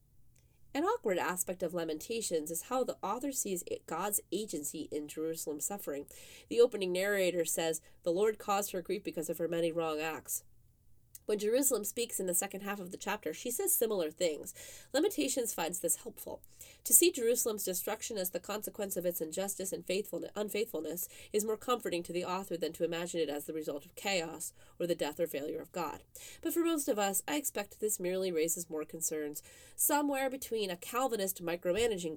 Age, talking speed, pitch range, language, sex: 30-49, 185 wpm, 165-220 Hz, English, female